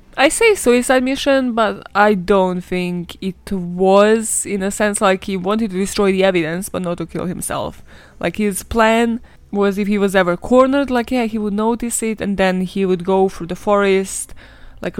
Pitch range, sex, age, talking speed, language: 185-225 Hz, female, 20-39, 195 wpm, English